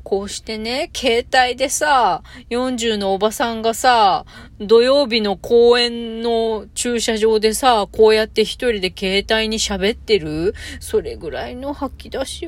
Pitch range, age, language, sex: 190-305 Hz, 30-49, Japanese, female